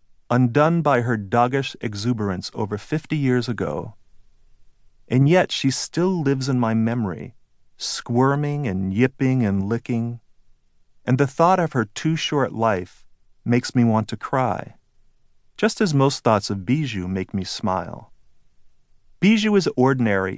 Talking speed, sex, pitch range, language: 140 wpm, male, 105-135 Hz, English